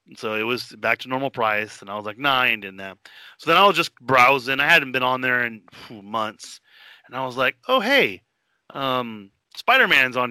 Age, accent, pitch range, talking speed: 30-49, American, 125-150 Hz, 225 wpm